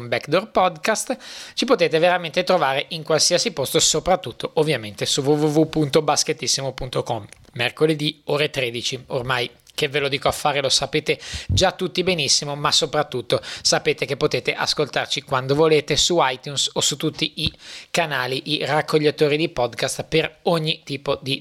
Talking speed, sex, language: 145 wpm, male, Italian